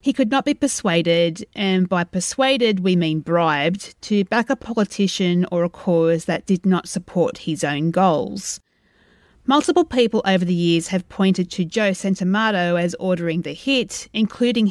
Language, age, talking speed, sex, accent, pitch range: English, 30-49, 165 wpm, female, Australian, 175-225 Hz